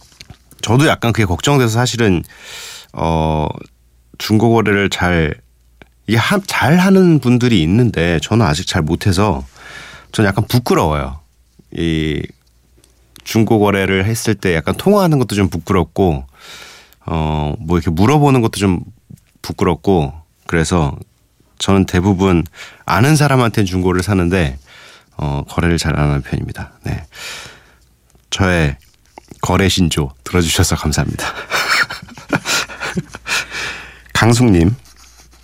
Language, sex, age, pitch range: Korean, male, 30-49, 70-105 Hz